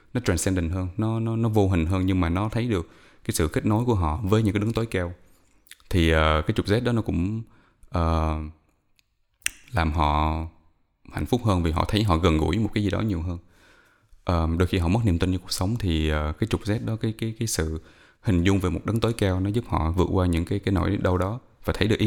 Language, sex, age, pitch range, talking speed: Vietnamese, male, 20-39, 85-105 Hz, 255 wpm